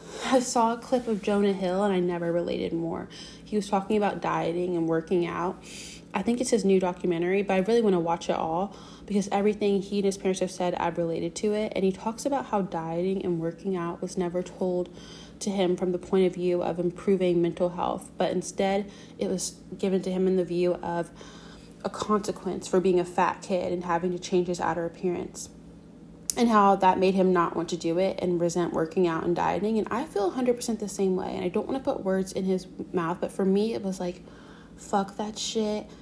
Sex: female